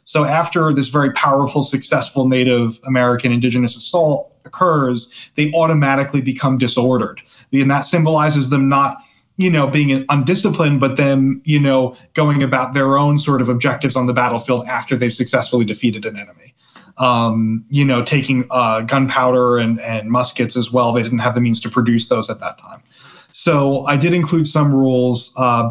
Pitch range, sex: 120-140 Hz, male